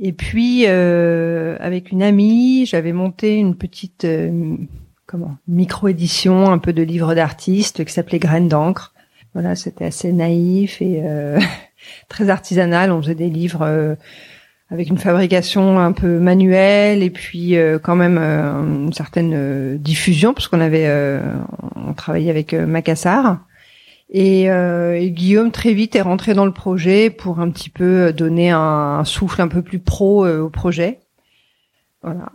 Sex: female